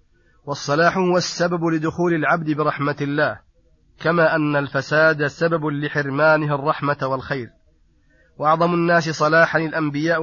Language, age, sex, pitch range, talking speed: Arabic, 30-49, male, 140-160 Hz, 105 wpm